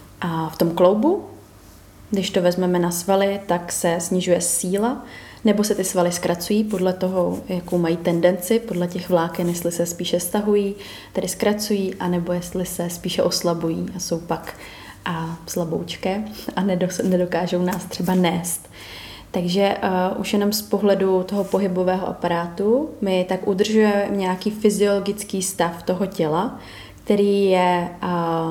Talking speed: 145 wpm